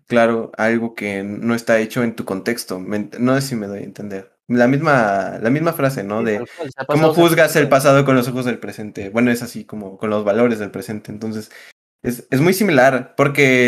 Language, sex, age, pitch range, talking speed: Spanish, male, 20-39, 115-145 Hz, 205 wpm